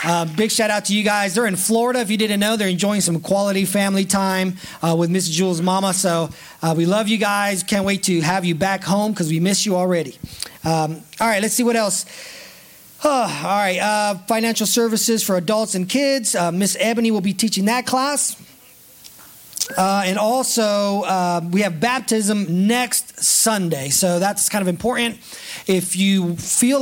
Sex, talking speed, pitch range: male, 190 wpm, 180-220 Hz